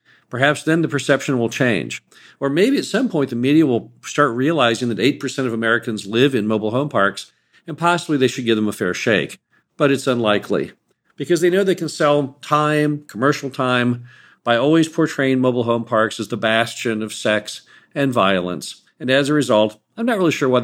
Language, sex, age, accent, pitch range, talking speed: English, male, 50-69, American, 105-145 Hz, 200 wpm